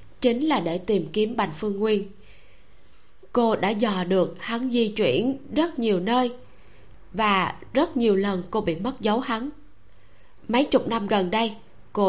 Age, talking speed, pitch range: 20-39, 165 wpm, 185-240 Hz